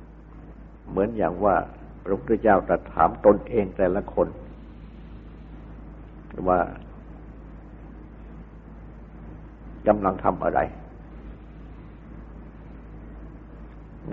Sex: male